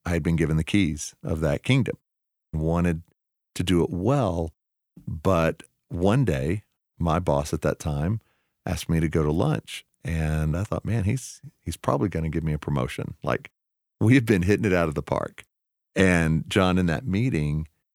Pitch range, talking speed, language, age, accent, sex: 80-100 Hz, 190 wpm, English, 40-59, American, male